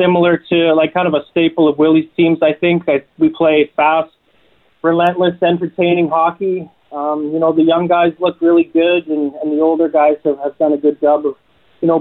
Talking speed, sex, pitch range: 205 wpm, male, 145-165 Hz